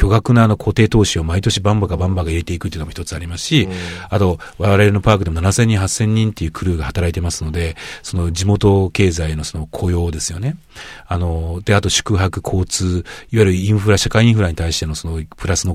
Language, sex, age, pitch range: Japanese, male, 40-59, 85-110 Hz